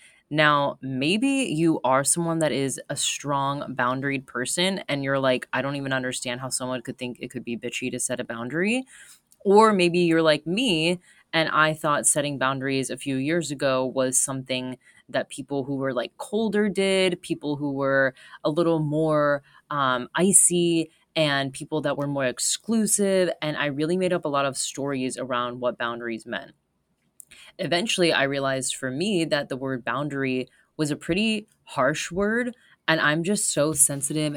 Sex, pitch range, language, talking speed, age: female, 135-170 Hz, English, 175 wpm, 20-39